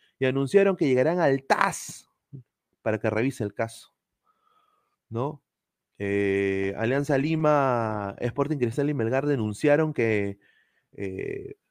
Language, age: Spanish, 30-49